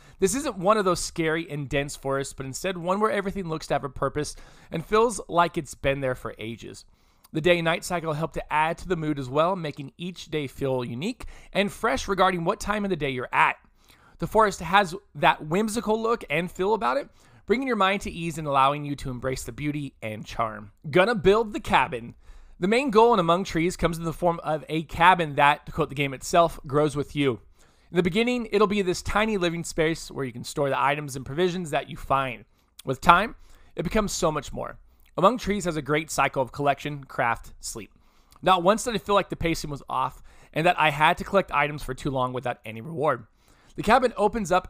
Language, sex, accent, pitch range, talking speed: English, male, American, 140-185 Hz, 225 wpm